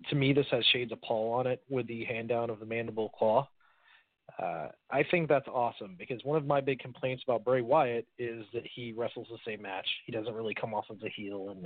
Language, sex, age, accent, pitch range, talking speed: English, male, 30-49, American, 115-140 Hz, 240 wpm